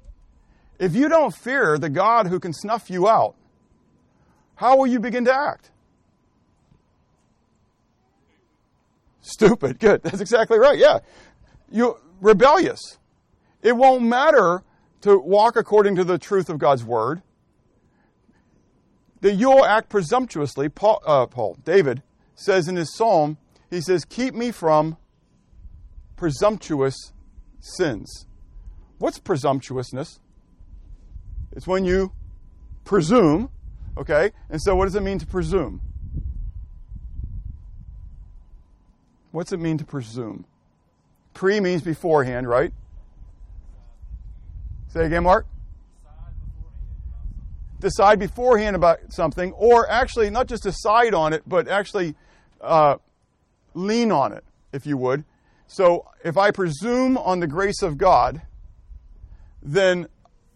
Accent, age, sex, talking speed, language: American, 50-69, male, 110 wpm, English